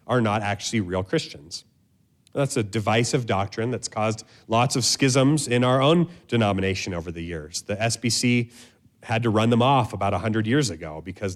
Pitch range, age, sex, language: 105-130 Hz, 30-49, male, English